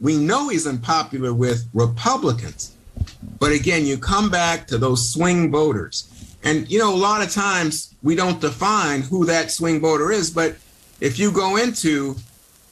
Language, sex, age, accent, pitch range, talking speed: English, male, 50-69, American, 125-180 Hz, 165 wpm